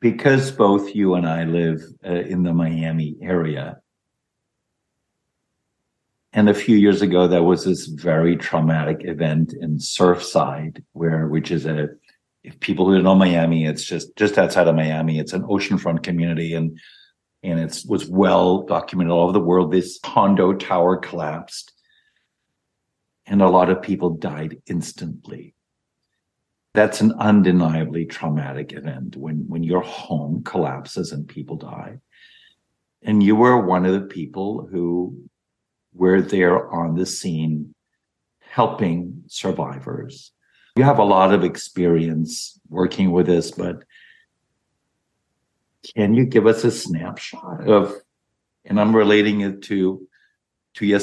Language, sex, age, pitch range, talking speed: English, male, 50-69, 80-100 Hz, 135 wpm